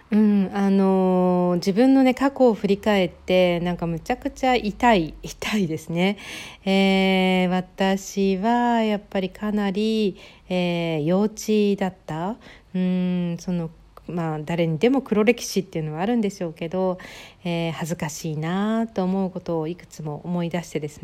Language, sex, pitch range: Japanese, female, 170-210 Hz